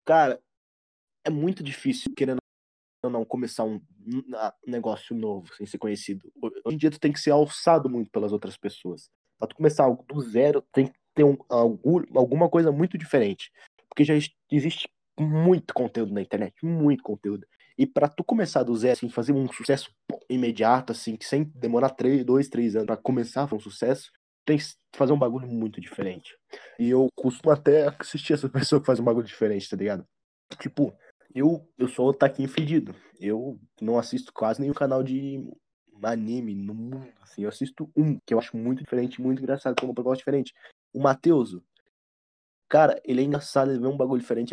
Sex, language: male, Portuguese